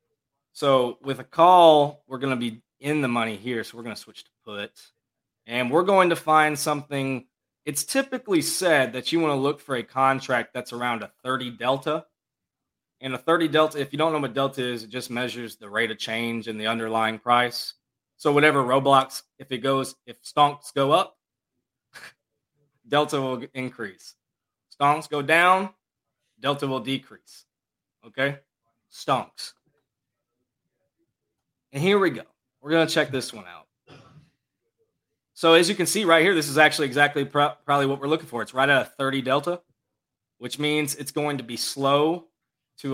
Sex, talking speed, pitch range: male, 175 wpm, 125-150 Hz